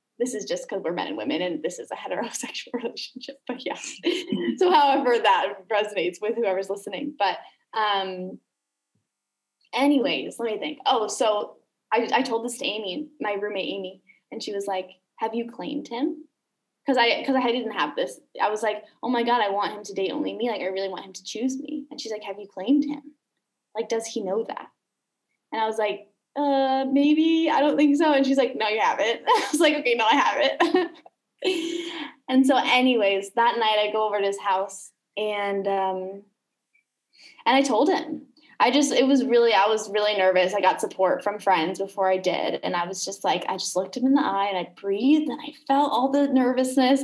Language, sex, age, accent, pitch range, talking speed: English, female, 10-29, American, 200-280 Hz, 215 wpm